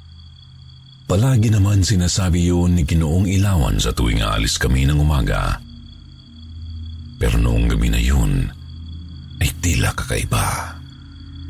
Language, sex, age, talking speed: Filipino, male, 50-69, 110 wpm